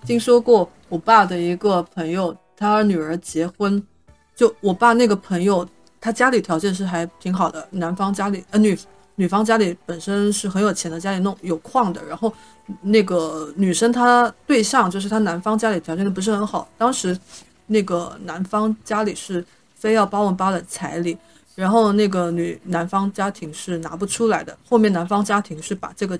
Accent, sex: native, female